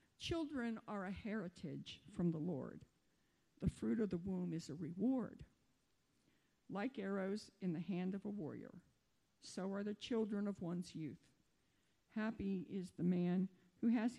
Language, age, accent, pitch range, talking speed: English, 50-69, American, 175-210 Hz, 150 wpm